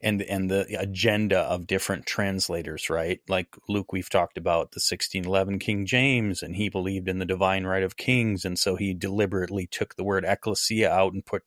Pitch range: 95-115 Hz